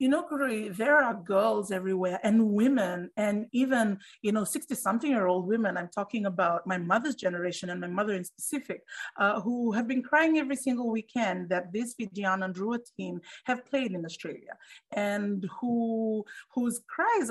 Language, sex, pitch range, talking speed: English, female, 190-235 Hz, 165 wpm